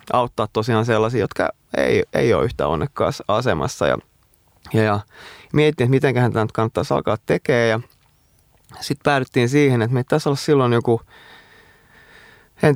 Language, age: Finnish, 30-49